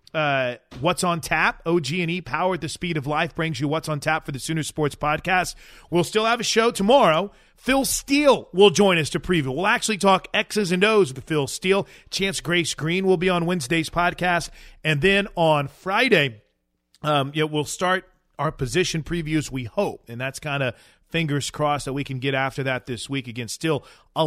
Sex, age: male, 30-49